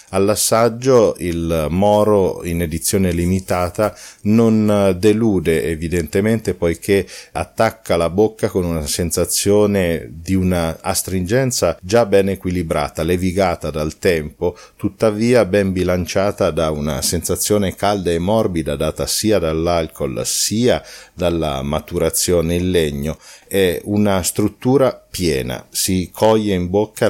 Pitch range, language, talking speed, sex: 85-105 Hz, Italian, 110 wpm, male